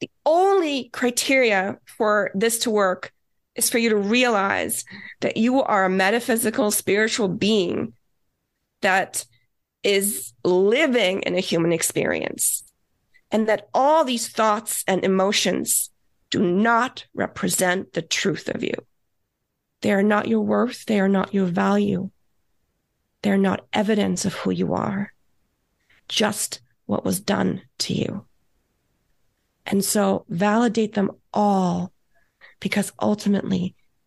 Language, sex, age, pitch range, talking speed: English, female, 30-49, 185-215 Hz, 125 wpm